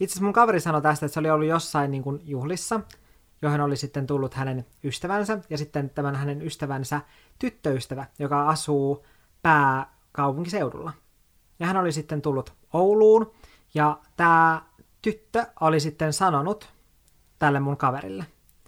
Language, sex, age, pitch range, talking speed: Finnish, male, 20-39, 140-175 Hz, 135 wpm